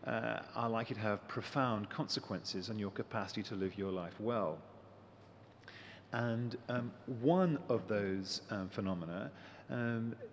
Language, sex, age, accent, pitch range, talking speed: English, male, 40-59, British, 95-115 Hz, 135 wpm